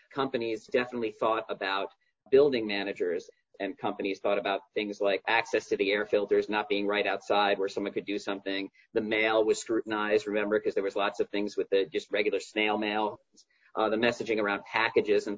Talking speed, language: 190 wpm, English